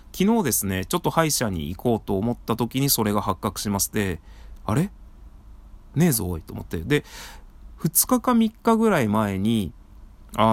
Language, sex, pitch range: Japanese, male, 95-135 Hz